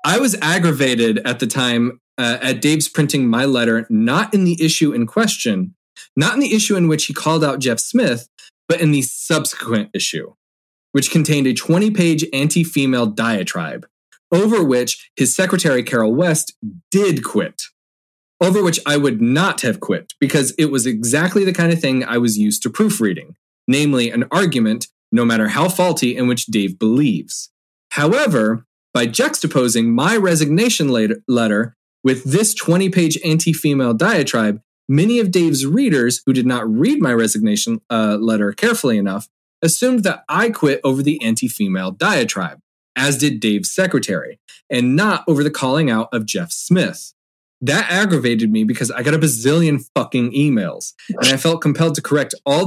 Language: English